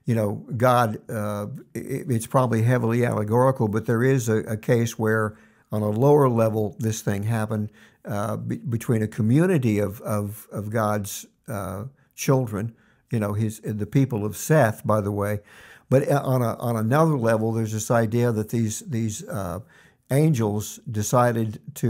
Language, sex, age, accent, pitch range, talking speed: English, male, 60-79, American, 110-140 Hz, 165 wpm